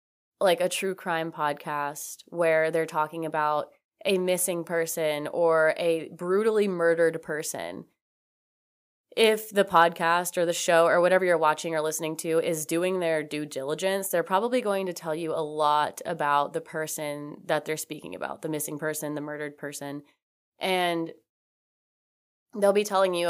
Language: English